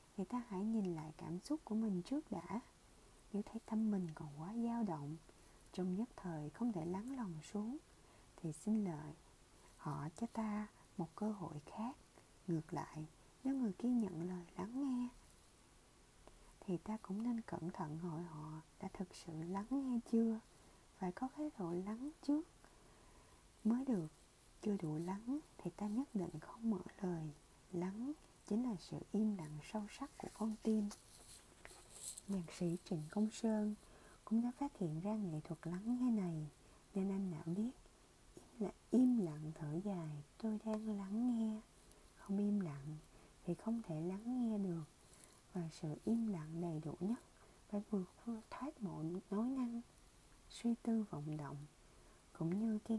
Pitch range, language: 165-225 Hz, Vietnamese